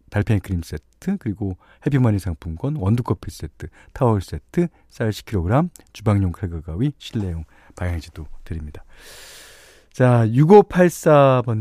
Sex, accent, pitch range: male, native, 95-145 Hz